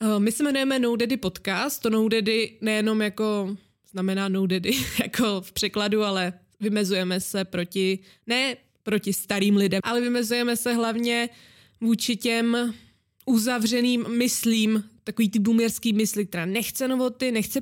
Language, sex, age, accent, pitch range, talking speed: Czech, female, 20-39, native, 190-225 Hz, 135 wpm